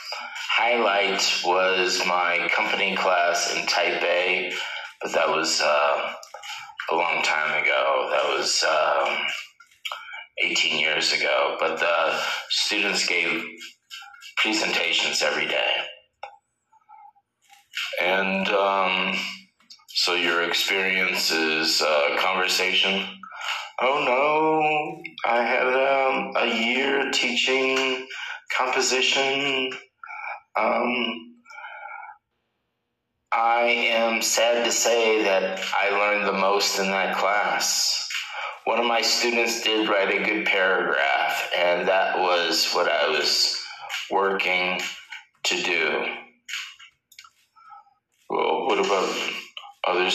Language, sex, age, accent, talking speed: English, male, 30-49, American, 95 wpm